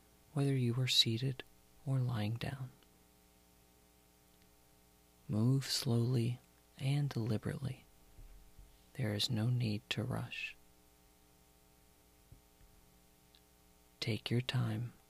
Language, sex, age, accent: English, male, 40-59, American